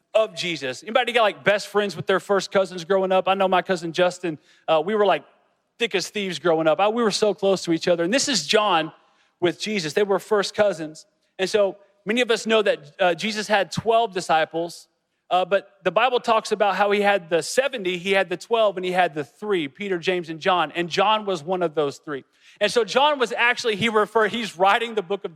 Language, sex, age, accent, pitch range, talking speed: English, male, 40-59, American, 175-215 Hz, 235 wpm